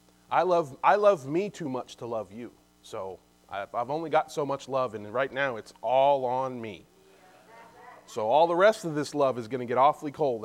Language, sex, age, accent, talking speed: English, male, 30-49, American, 215 wpm